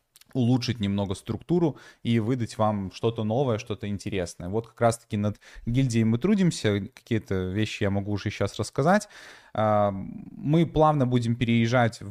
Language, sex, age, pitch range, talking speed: Russian, male, 20-39, 100-120 Hz, 140 wpm